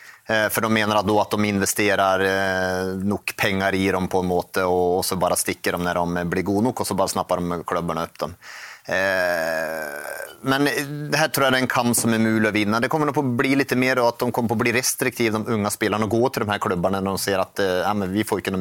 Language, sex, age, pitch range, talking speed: English, male, 30-49, 105-135 Hz, 250 wpm